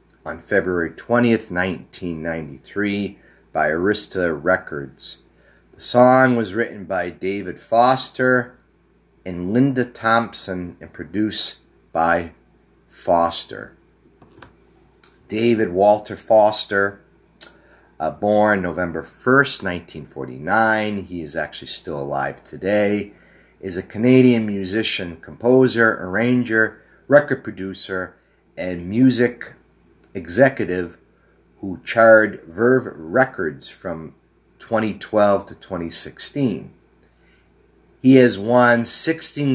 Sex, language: male, English